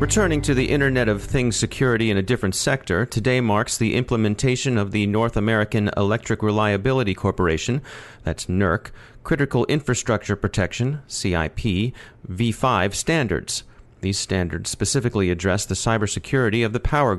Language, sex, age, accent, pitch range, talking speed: English, male, 40-59, American, 100-125 Hz, 135 wpm